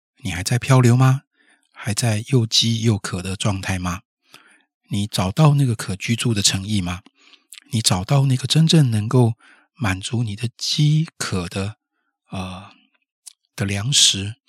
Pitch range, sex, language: 100-125 Hz, male, Chinese